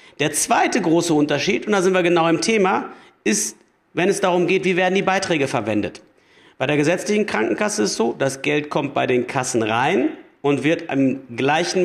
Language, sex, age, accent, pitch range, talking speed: German, male, 50-69, German, 150-185 Hz, 195 wpm